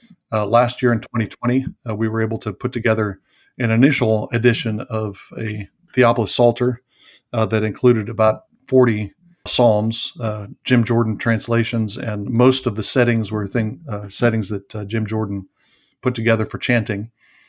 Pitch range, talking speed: 110-125 Hz, 155 wpm